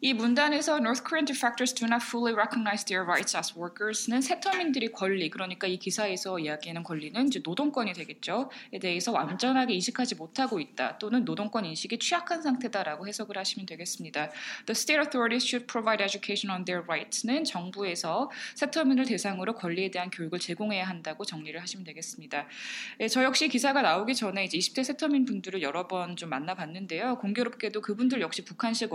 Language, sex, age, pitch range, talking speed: English, female, 20-39, 185-250 Hz, 135 wpm